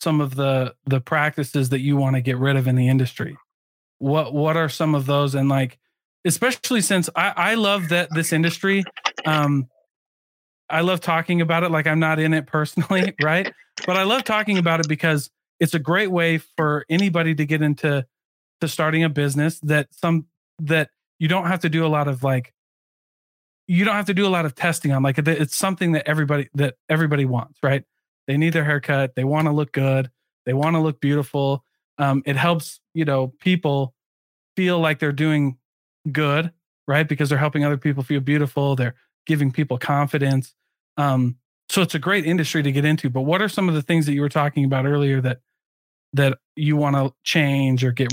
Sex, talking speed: male, 200 wpm